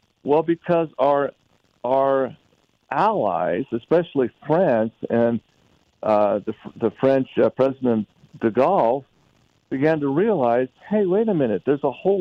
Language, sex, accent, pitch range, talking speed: English, male, American, 115-155 Hz, 130 wpm